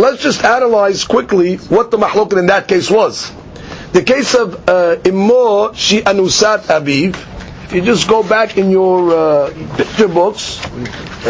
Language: English